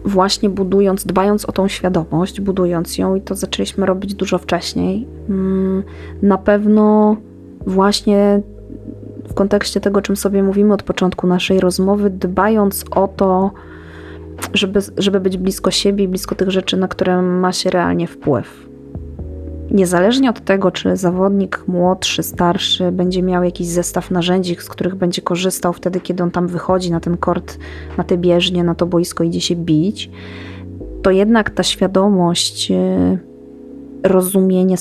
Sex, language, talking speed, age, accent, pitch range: female, Polish, 140 wpm, 20-39, native, 175-195 Hz